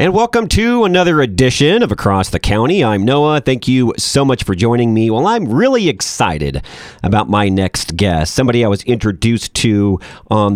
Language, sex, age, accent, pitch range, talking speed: English, male, 40-59, American, 95-130 Hz, 180 wpm